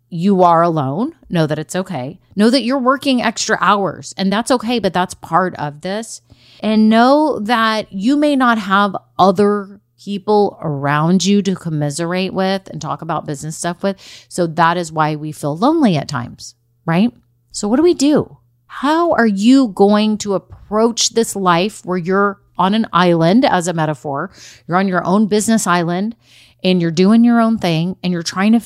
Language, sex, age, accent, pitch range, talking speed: English, female, 30-49, American, 155-205 Hz, 185 wpm